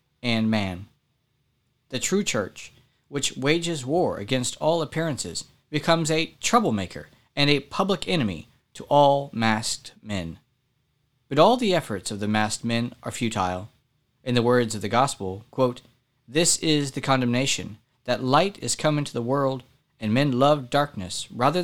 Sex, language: male, English